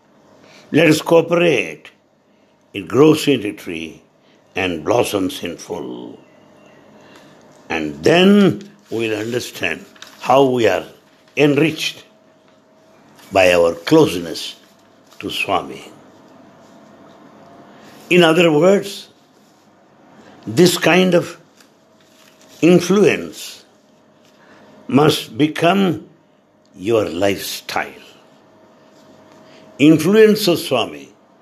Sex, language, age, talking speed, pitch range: male, English, 60-79, 75 wpm, 115-175 Hz